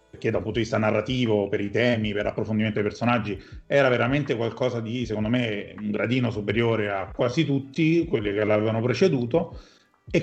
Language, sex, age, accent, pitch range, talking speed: Italian, male, 40-59, native, 115-170 Hz, 180 wpm